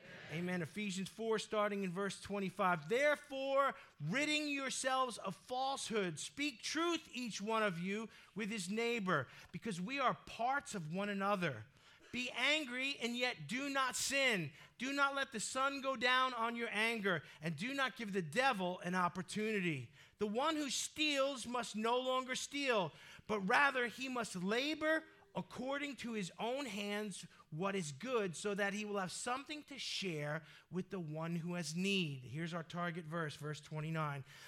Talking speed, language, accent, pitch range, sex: 165 wpm, English, American, 185-255 Hz, male